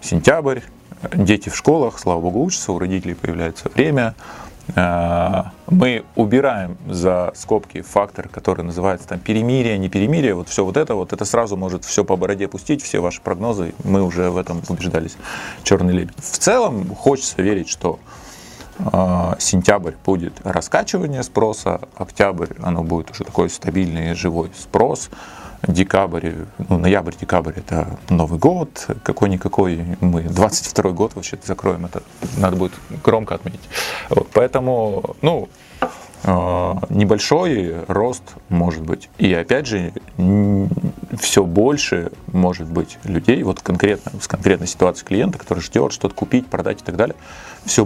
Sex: male